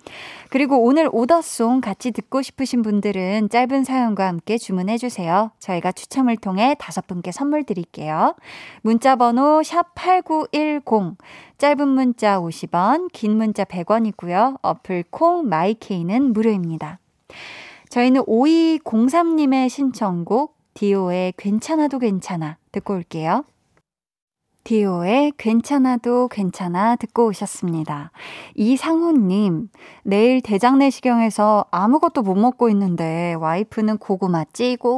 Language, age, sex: Korean, 20-39, female